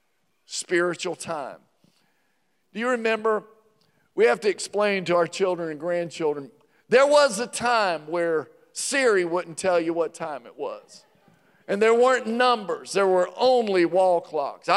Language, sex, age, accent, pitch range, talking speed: English, male, 50-69, American, 175-245 Hz, 145 wpm